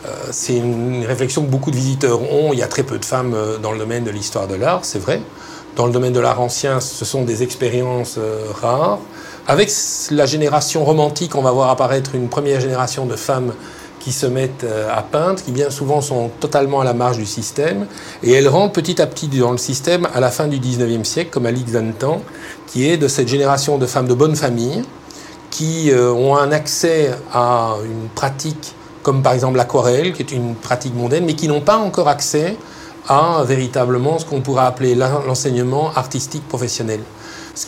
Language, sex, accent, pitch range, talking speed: French, male, French, 120-150 Hz, 200 wpm